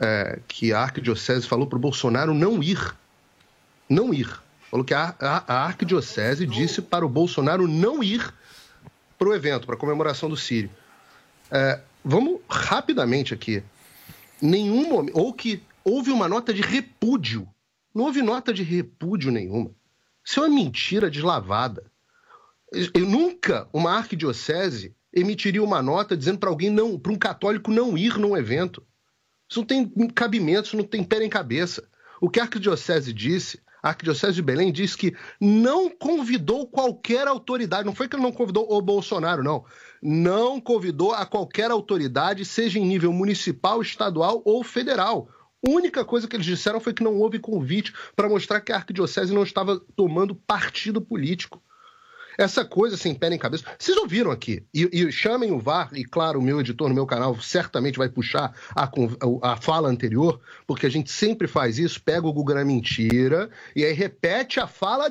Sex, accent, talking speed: male, Brazilian, 170 wpm